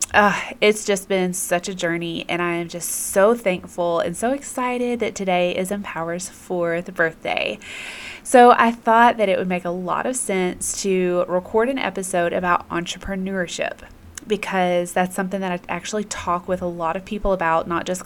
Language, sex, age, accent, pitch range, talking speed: English, female, 20-39, American, 175-215 Hz, 180 wpm